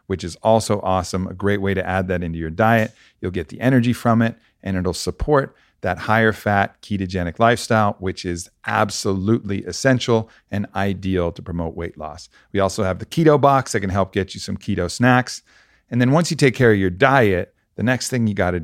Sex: male